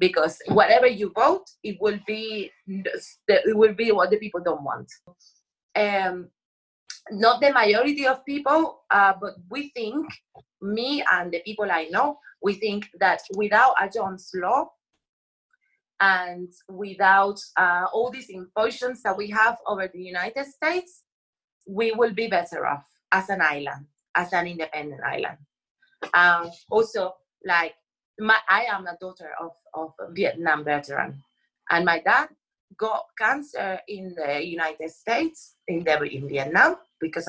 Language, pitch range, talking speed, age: English, 175-230 Hz, 145 wpm, 30-49